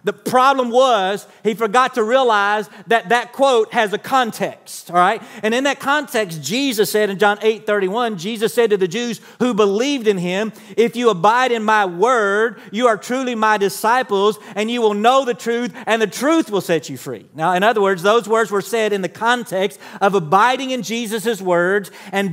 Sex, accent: male, American